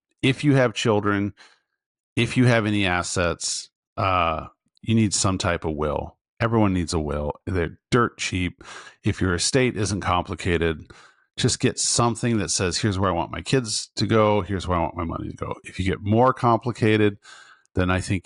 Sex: male